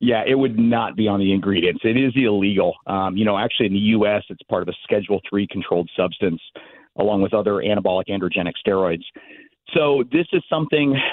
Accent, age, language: American, 40-59, English